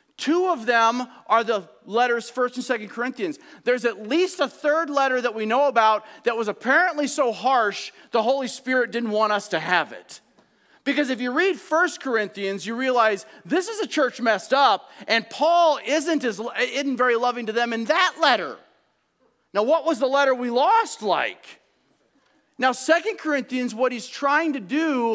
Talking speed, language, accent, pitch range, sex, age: 180 wpm, English, American, 225-295 Hz, male, 40-59